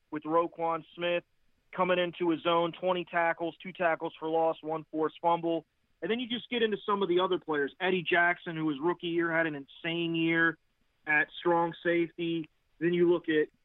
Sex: male